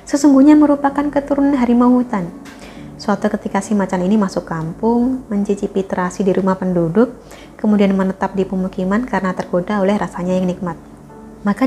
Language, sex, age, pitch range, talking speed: Indonesian, female, 20-39, 180-240 Hz, 145 wpm